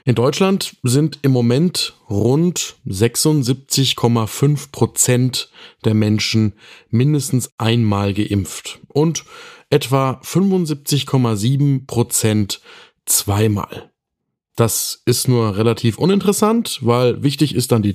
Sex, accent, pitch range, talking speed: male, German, 110-140 Hz, 95 wpm